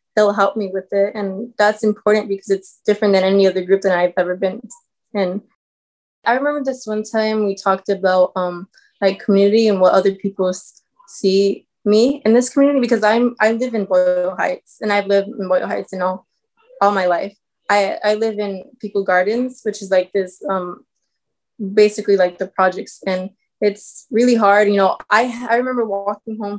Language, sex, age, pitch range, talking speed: English, female, 20-39, 190-215 Hz, 190 wpm